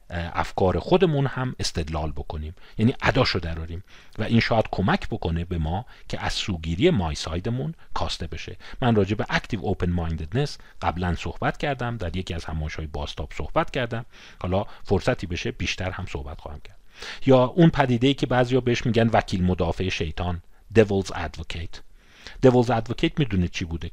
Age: 40-59